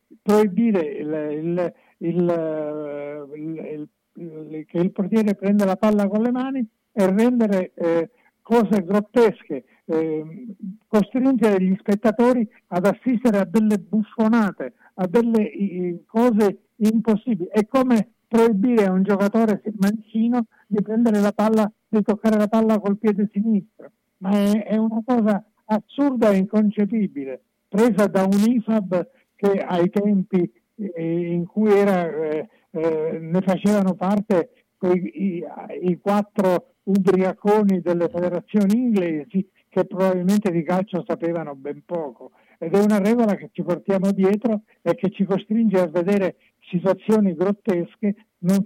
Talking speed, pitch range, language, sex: 125 wpm, 180-220 Hz, Italian, male